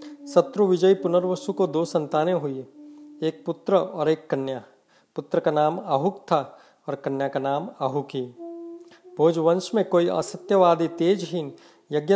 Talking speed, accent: 140 wpm, native